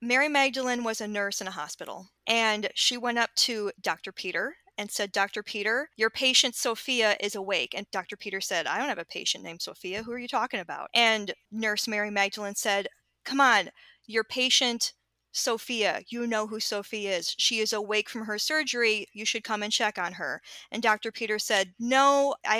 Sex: female